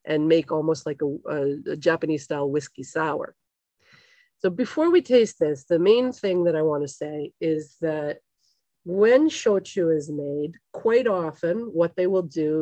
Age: 40-59